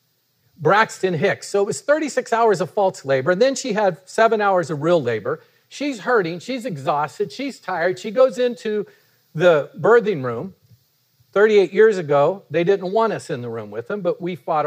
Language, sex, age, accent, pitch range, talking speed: English, male, 50-69, American, 145-225 Hz, 190 wpm